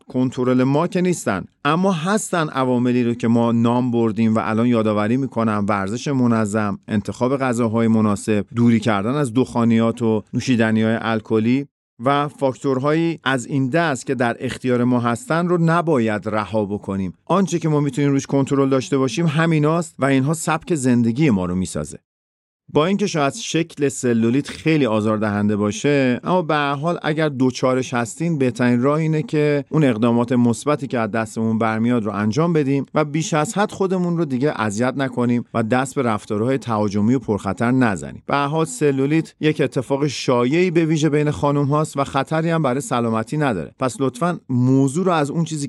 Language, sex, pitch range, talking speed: Persian, male, 115-150 Hz, 165 wpm